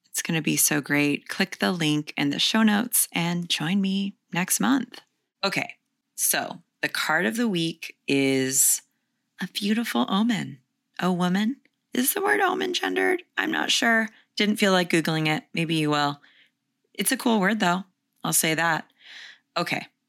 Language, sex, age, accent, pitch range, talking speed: English, female, 20-39, American, 155-225 Hz, 165 wpm